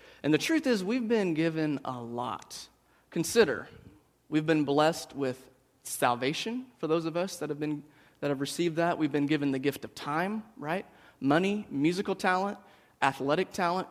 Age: 30-49